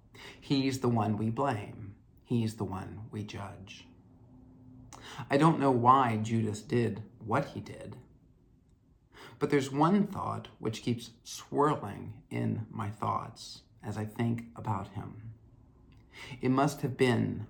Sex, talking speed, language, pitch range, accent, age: male, 130 wpm, English, 105-125 Hz, American, 40-59